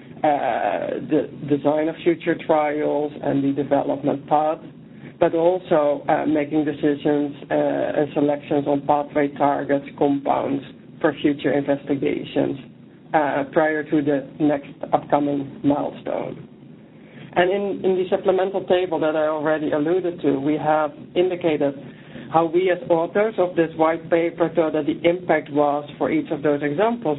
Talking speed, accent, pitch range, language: 140 wpm, Dutch, 145-170 Hz, English